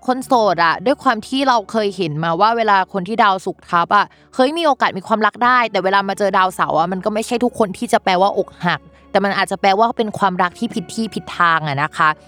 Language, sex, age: Thai, female, 20-39